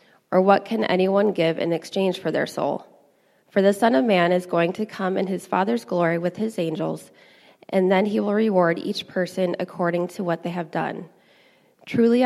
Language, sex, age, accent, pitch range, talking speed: English, female, 20-39, American, 175-210 Hz, 195 wpm